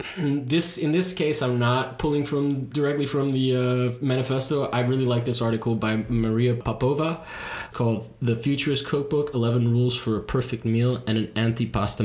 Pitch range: 115-135 Hz